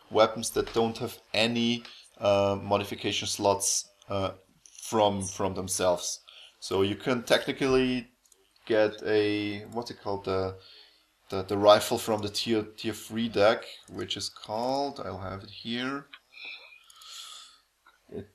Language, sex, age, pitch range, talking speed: English, male, 20-39, 100-120 Hz, 130 wpm